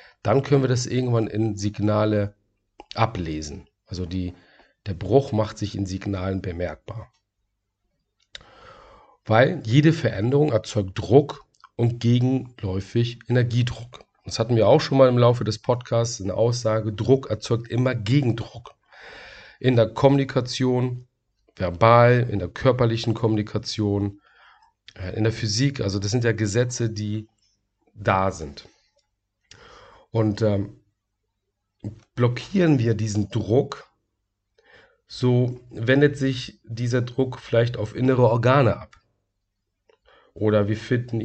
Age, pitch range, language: 40-59, 100-125 Hz, German